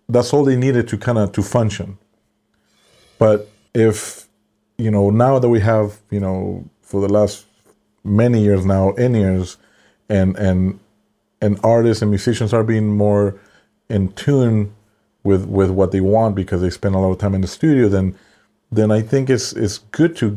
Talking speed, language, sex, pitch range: 180 wpm, English, male, 100-110 Hz